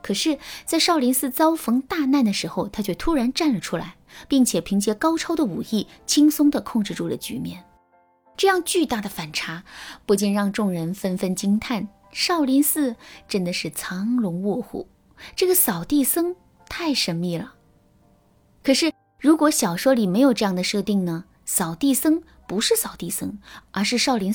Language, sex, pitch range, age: Chinese, female, 190-275 Hz, 20-39